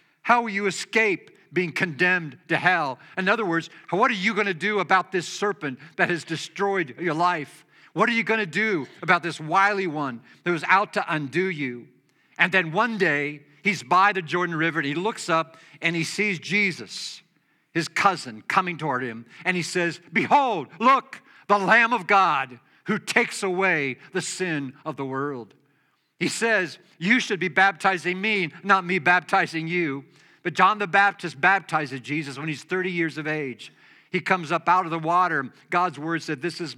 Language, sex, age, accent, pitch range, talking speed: English, male, 50-69, American, 145-190 Hz, 190 wpm